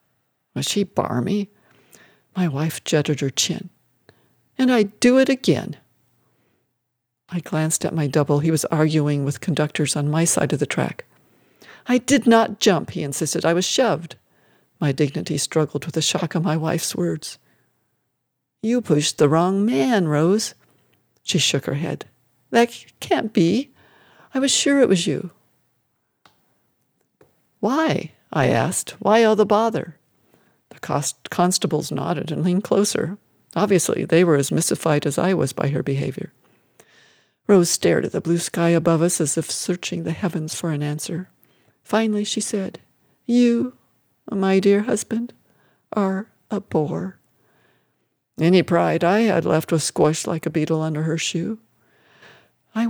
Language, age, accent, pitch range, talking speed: English, 60-79, American, 150-200 Hz, 150 wpm